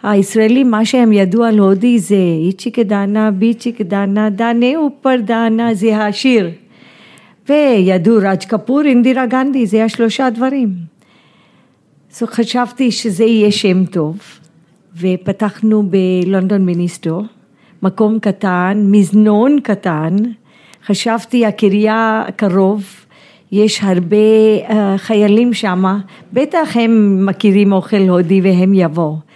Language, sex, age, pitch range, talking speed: Hebrew, female, 50-69, 195-235 Hz, 110 wpm